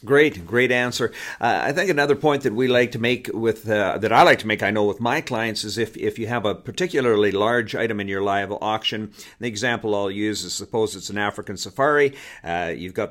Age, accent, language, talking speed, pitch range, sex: 50-69, American, English, 235 wpm, 95-115 Hz, male